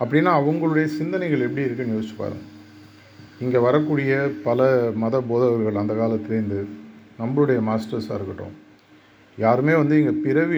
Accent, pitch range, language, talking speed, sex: native, 105-130 Hz, Tamil, 120 wpm, male